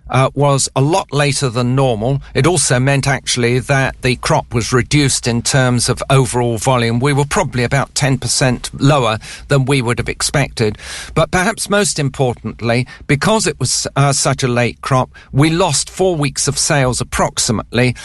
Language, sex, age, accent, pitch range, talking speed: English, male, 50-69, British, 130-160 Hz, 170 wpm